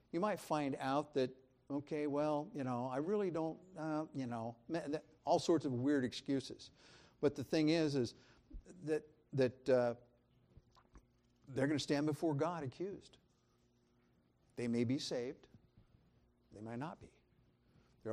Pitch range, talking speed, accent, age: 115-145 Hz, 145 wpm, American, 60-79